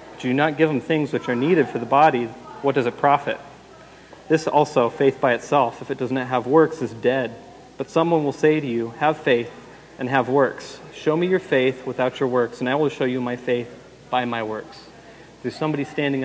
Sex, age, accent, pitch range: male, 30-49, American, 120-145 Hz